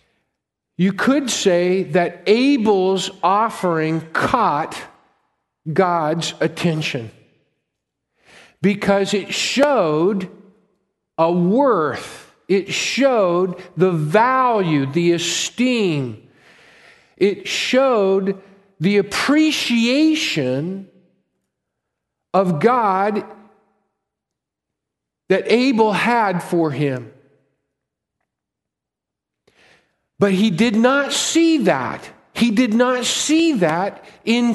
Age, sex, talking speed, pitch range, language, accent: 50-69, male, 75 wpm, 180-230 Hz, English, American